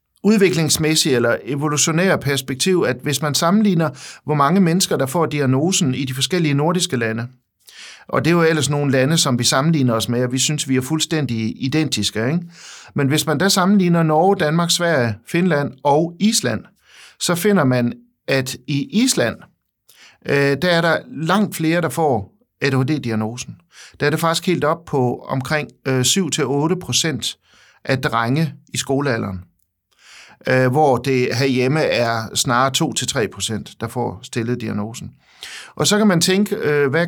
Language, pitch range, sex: Danish, 125-165 Hz, male